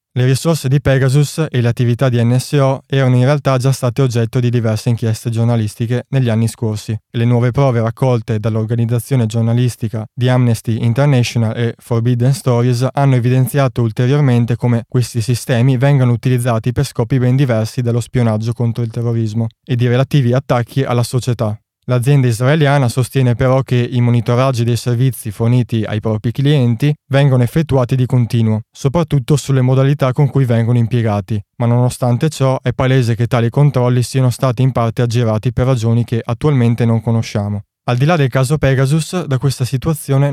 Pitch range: 115-135 Hz